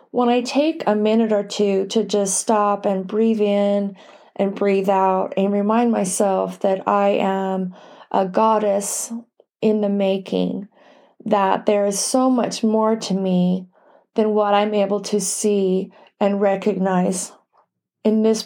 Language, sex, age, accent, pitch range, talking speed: English, female, 30-49, American, 195-225 Hz, 145 wpm